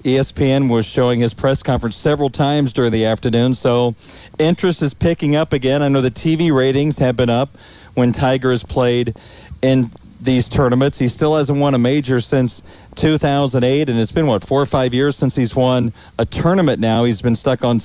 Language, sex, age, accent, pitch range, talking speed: English, male, 40-59, American, 120-145 Hz, 195 wpm